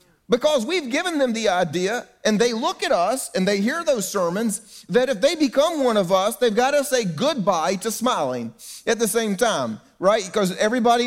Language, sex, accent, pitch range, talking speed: English, male, American, 170-235 Hz, 200 wpm